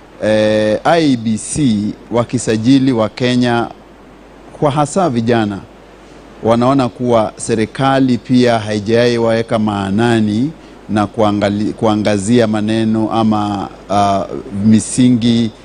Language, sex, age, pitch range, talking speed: Swahili, male, 30-49, 105-130 Hz, 85 wpm